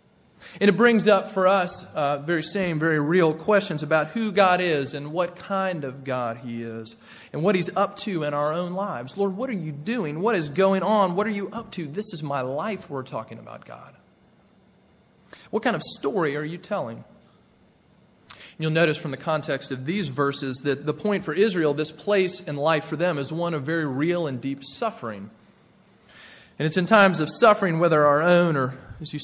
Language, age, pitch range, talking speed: English, 30-49, 135-175 Hz, 205 wpm